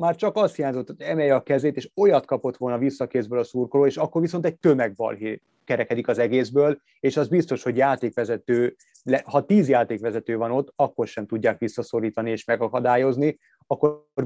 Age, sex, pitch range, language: 30-49, male, 115-135 Hz, Hungarian